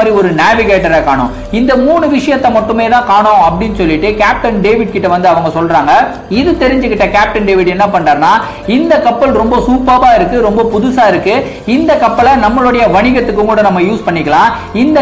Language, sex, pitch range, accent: Tamil, male, 190-250 Hz, native